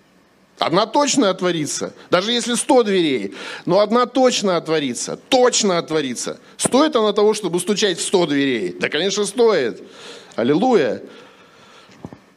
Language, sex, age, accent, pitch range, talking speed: Russian, male, 50-69, native, 160-230 Hz, 120 wpm